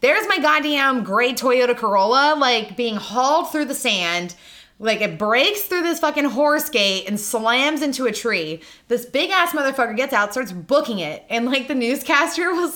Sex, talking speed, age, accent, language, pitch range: female, 185 wpm, 20-39, American, English, 195-290 Hz